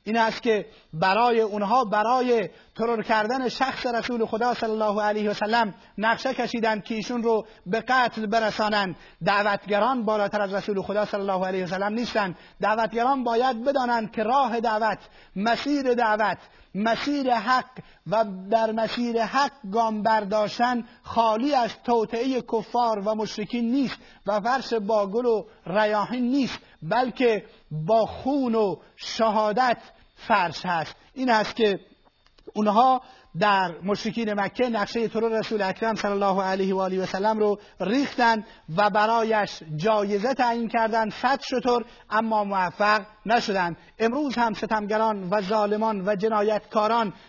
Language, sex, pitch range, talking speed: Persian, male, 210-235 Hz, 135 wpm